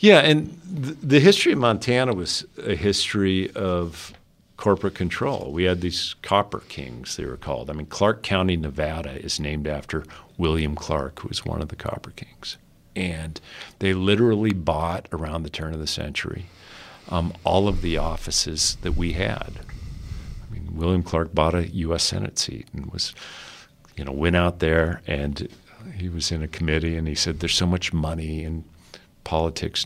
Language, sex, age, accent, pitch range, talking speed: English, male, 50-69, American, 80-95 Hz, 175 wpm